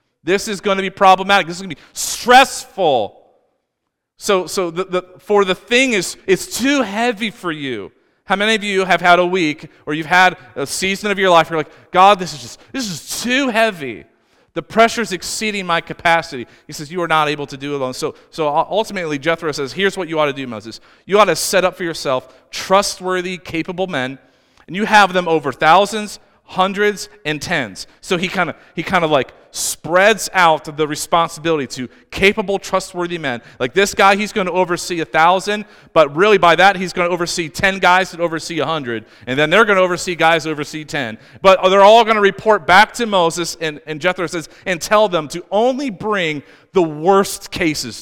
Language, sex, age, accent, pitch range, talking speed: English, male, 40-59, American, 155-200 Hz, 205 wpm